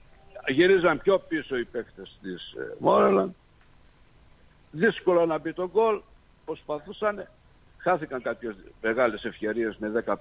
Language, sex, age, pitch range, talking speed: Greek, male, 60-79, 130-185 Hz, 110 wpm